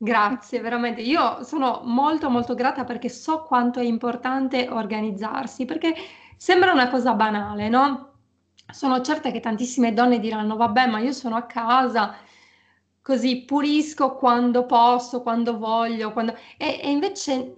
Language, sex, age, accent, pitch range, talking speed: Italian, female, 20-39, native, 235-290 Hz, 135 wpm